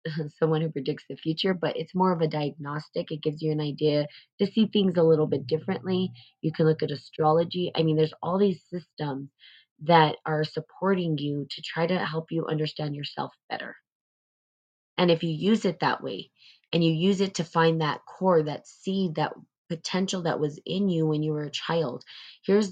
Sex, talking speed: female, 200 wpm